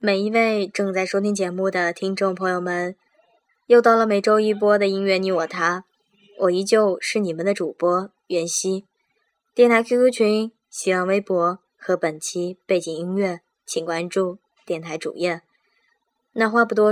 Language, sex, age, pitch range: Chinese, male, 10-29, 180-220 Hz